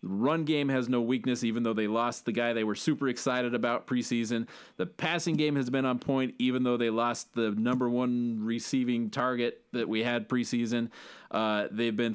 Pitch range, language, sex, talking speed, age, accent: 120-160 Hz, English, male, 200 wpm, 30-49, American